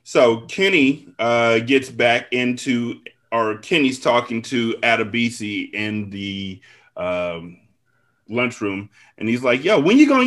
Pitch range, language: 115-150 Hz, English